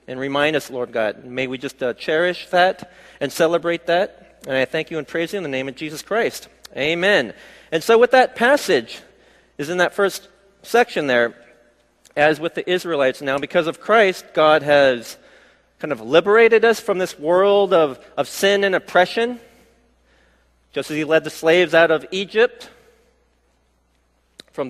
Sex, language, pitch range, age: male, Korean, 140-210 Hz, 40-59